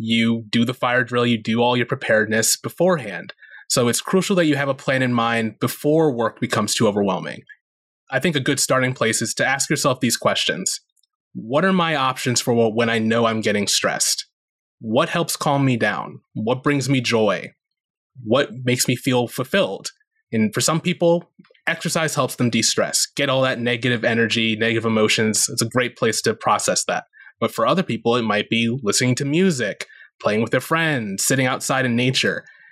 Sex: male